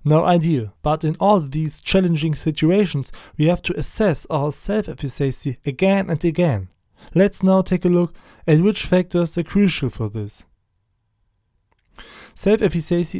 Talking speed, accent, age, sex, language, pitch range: 135 wpm, German, 20-39, male, German, 150-185 Hz